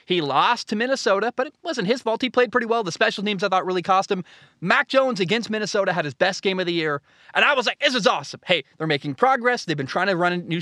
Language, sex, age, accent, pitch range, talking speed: English, male, 20-39, American, 180-250 Hz, 275 wpm